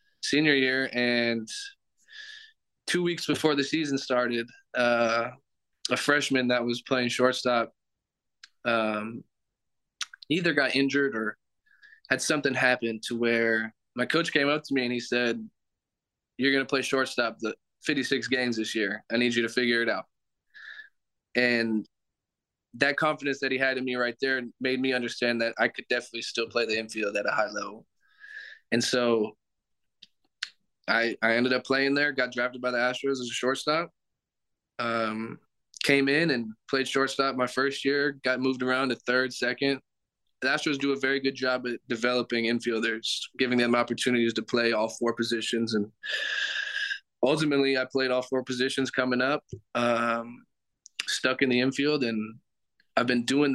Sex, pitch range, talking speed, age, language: male, 115-140 Hz, 160 wpm, 20-39, English